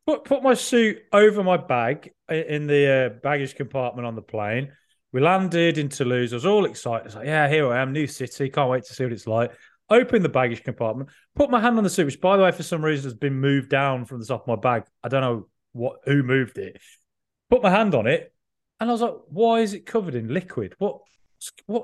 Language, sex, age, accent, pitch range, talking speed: English, male, 30-49, British, 135-200 Hz, 245 wpm